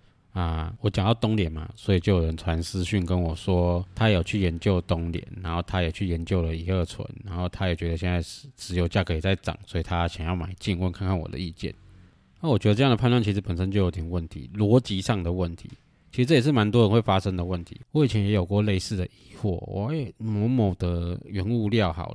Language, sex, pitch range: Chinese, male, 90-110 Hz